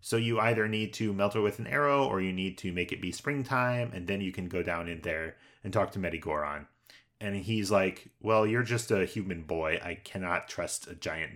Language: English